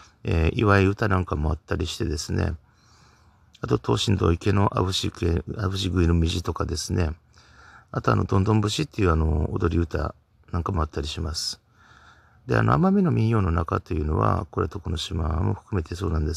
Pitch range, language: 85-110 Hz, Japanese